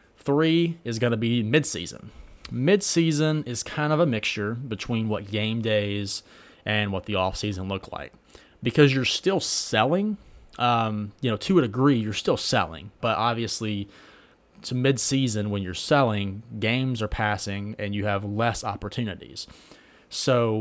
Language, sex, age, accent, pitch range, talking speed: English, male, 30-49, American, 100-125 Hz, 150 wpm